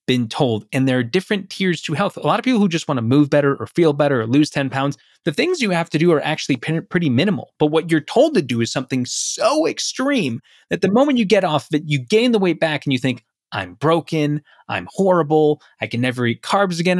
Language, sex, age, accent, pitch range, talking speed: English, male, 20-39, American, 135-200 Hz, 255 wpm